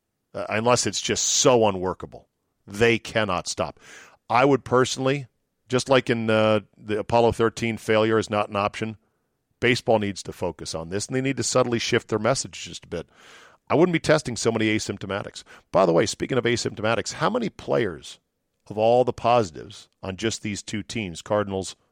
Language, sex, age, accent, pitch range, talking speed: English, male, 40-59, American, 105-125 Hz, 180 wpm